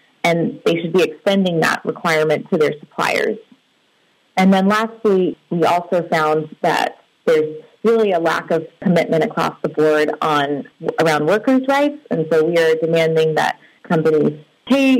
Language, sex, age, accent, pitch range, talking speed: English, female, 30-49, American, 160-205 Hz, 150 wpm